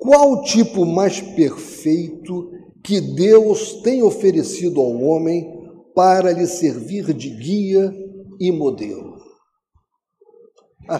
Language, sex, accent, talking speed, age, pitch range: Portuguese, male, Brazilian, 105 wpm, 60-79, 160-220 Hz